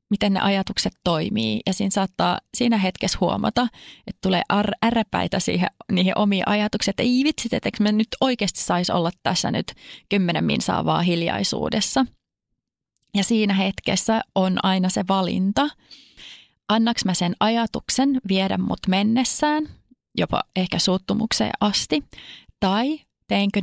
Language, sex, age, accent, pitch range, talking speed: Finnish, female, 30-49, native, 190-235 Hz, 130 wpm